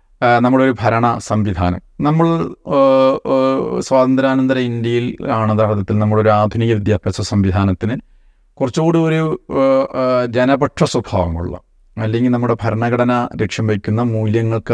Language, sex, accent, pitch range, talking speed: Malayalam, male, native, 110-130 Hz, 90 wpm